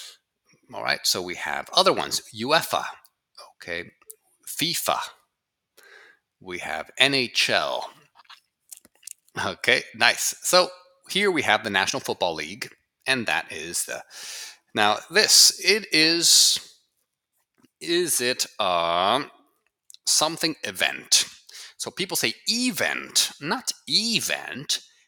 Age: 30-49